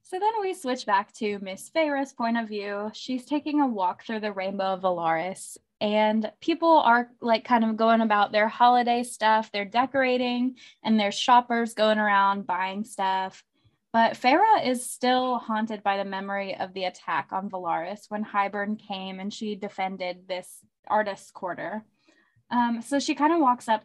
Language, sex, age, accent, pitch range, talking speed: English, female, 20-39, American, 195-235 Hz, 175 wpm